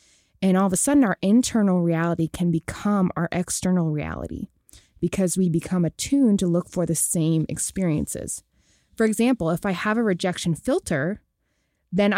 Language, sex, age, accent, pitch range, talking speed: English, female, 20-39, American, 170-205 Hz, 160 wpm